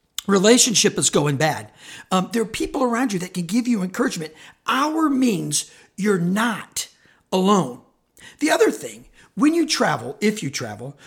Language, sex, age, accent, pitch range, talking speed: English, male, 50-69, American, 175-240 Hz, 155 wpm